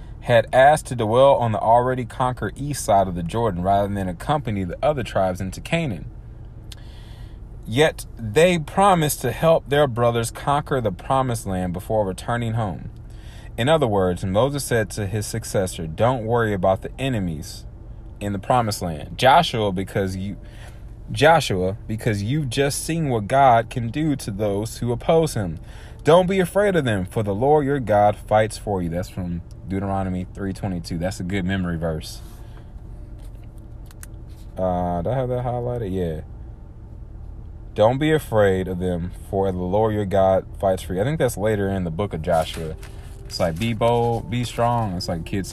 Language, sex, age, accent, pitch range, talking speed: English, male, 30-49, American, 95-120 Hz, 170 wpm